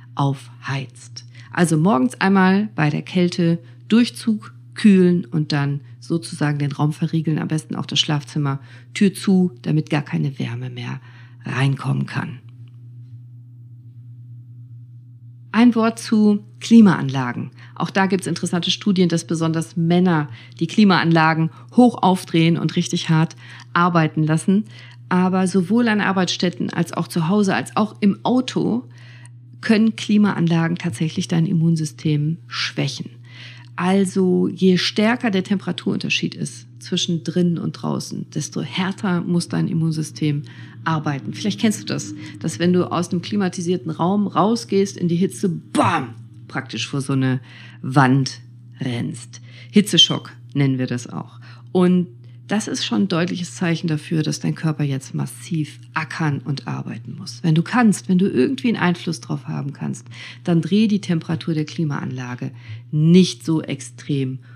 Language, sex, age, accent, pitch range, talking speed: German, female, 40-59, German, 125-180 Hz, 140 wpm